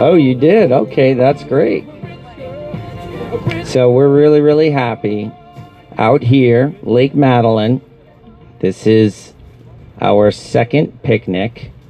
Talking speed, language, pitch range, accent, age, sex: 100 wpm, English, 110-130 Hz, American, 40-59, male